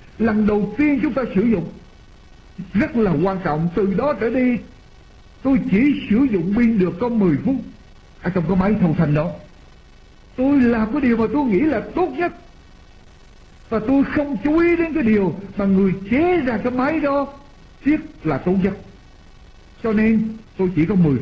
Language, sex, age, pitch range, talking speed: Vietnamese, male, 60-79, 175-265 Hz, 185 wpm